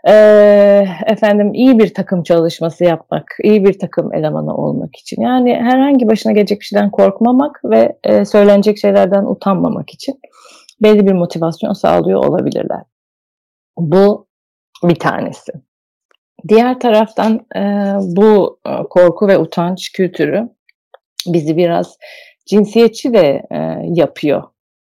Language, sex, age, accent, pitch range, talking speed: Turkish, female, 30-49, native, 155-210 Hz, 105 wpm